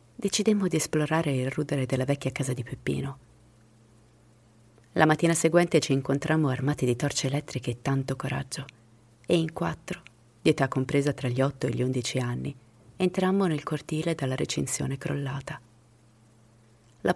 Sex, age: female, 30-49